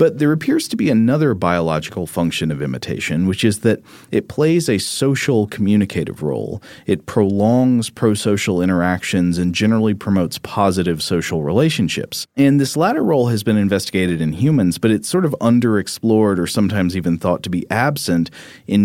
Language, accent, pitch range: English, American, 90-110 Hz